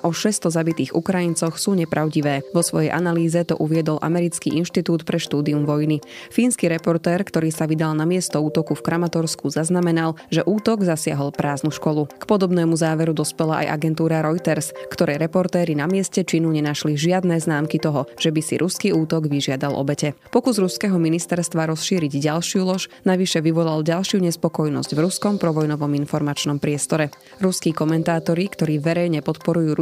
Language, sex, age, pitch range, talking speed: Slovak, female, 20-39, 150-175 Hz, 150 wpm